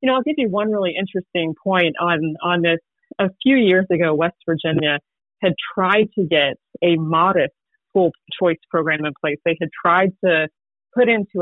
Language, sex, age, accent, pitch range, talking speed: English, female, 30-49, American, 165-200 Hz, 185 wpm